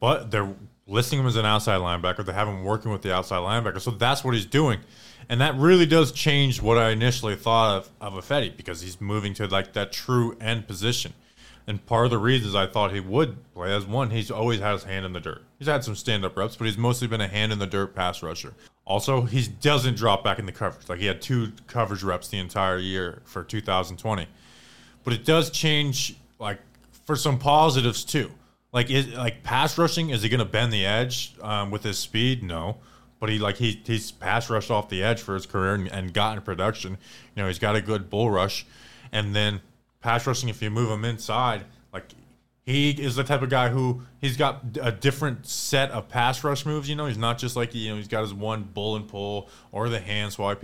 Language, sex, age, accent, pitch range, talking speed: English, male, 20-39, American, 105-125 Hz, 230 wpm